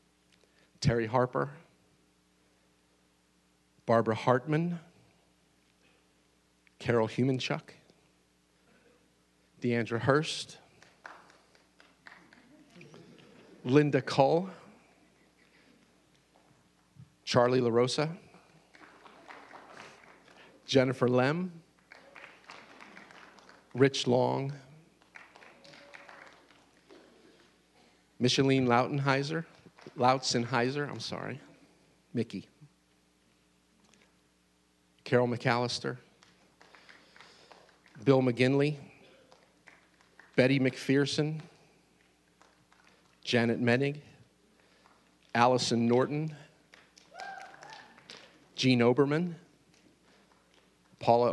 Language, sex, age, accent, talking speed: English, male, 50-69, American, 40 wpm